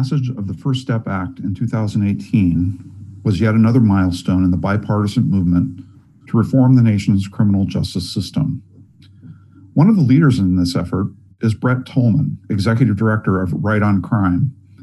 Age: 50-69